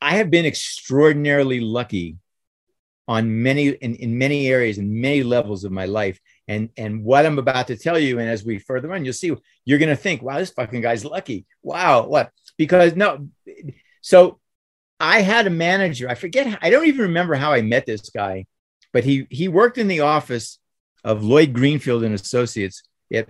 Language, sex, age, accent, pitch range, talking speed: English, male, 50-69, American, 115-150 Hz, 190 wpm